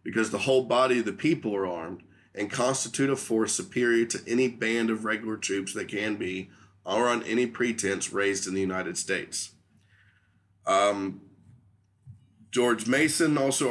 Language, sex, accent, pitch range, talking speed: English, male, American, 100-120 Hz, 160 wpm